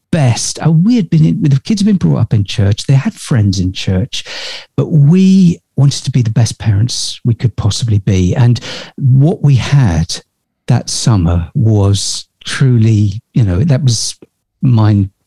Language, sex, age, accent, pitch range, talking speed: English, male, 50-69, British, 105-135 Hz, 170 wpm